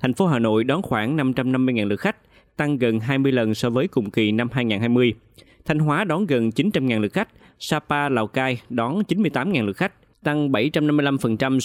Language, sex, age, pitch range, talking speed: Vietnamese, male, 20-39, 110-140 Hz, 180 wpm